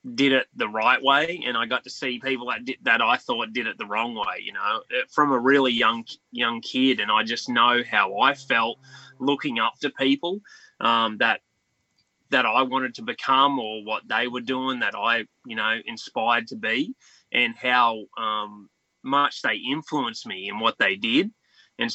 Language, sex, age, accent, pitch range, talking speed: English, male, 20-39, Australian, 110-135 Hz, 195 wpm